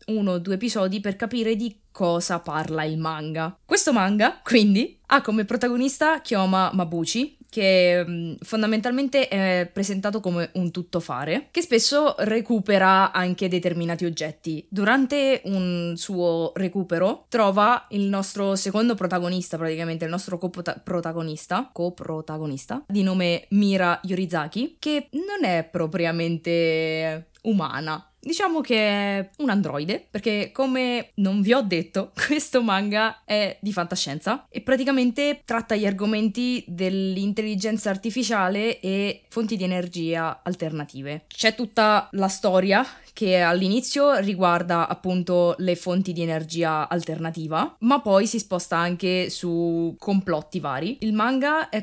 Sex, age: female, 20-39